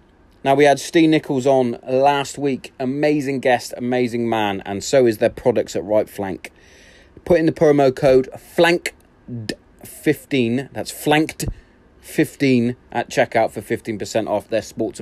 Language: English